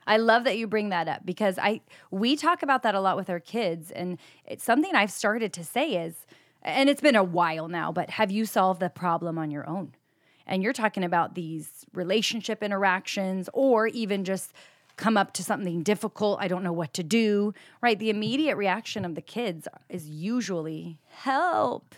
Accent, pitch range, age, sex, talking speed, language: American, 170-225 Hz, 30-49, female, 195 wpm, English